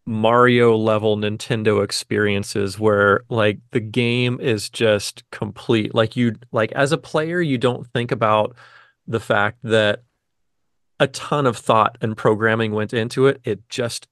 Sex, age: male, 30-49